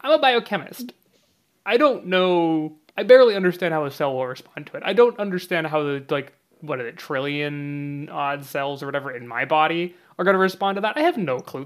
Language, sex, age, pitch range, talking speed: English, male, 20-39, 130-180 Hz, 220 wpm